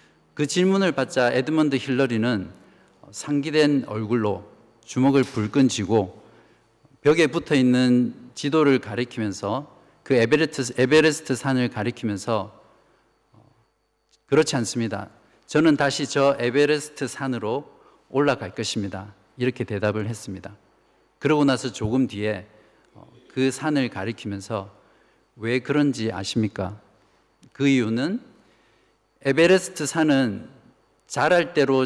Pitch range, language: 105-135 Hz, Korean